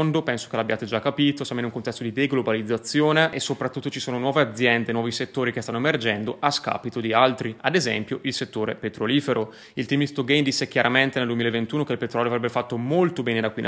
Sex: male